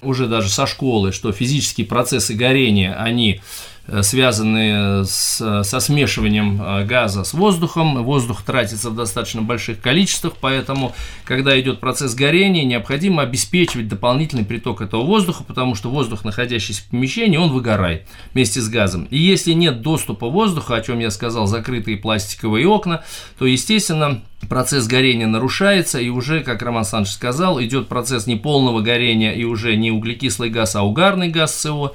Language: Russian